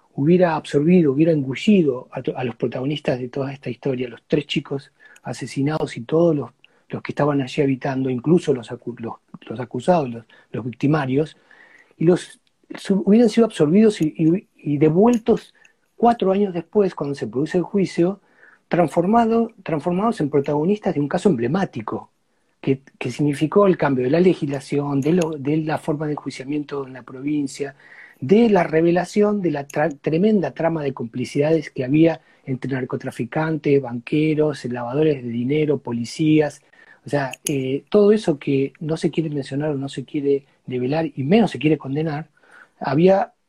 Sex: male